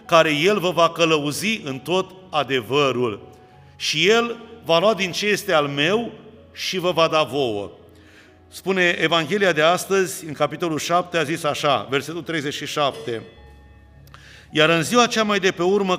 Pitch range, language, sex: 150-185 Hz, Romanian, male